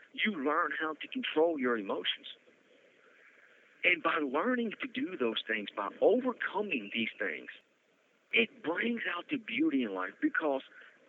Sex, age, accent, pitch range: male, 50-69, American, 130-180 Hz